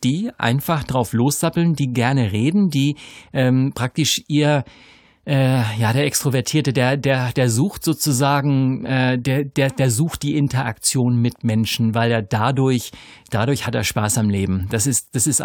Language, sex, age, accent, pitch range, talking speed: German, male, 50-69, German, 115-140 Hz, 165 wpm